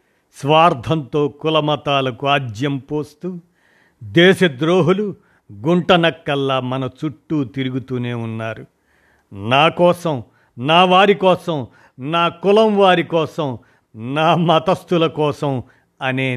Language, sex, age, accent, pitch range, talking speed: Telugu, male, 50-69, native, 130-165 Hz, 90 wpm